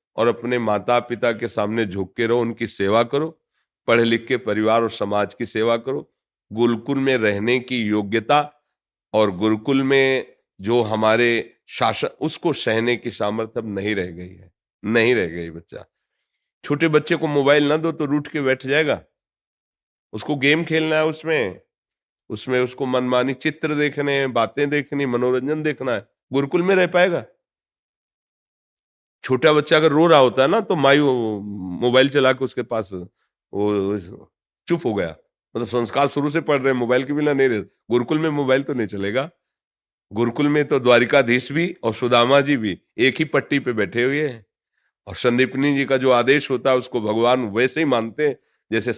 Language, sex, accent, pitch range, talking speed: Hindi, male, native, 110-145 Hz, 175 wpm